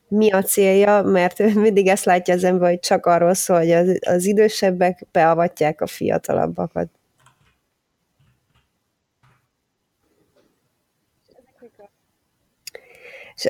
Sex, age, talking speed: female, 20-39, 90 wpm